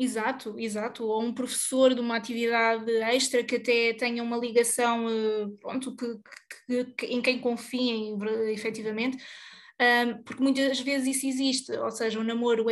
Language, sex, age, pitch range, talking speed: Portuguese, female, 20-39, 225-255 Hz, 155 wpm